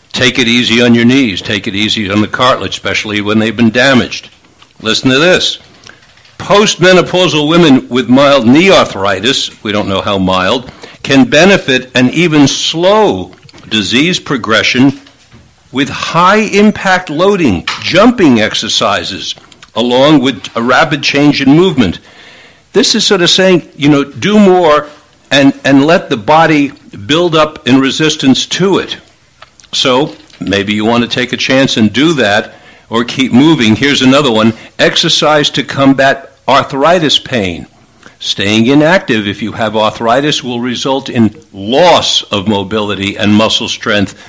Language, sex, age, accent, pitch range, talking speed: English, male, 60-79, American, 115-155 Hz, 145 wpm